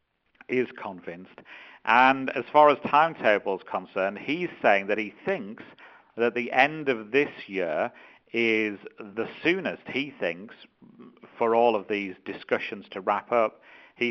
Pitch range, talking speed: 105-130 Hz, 145 wpm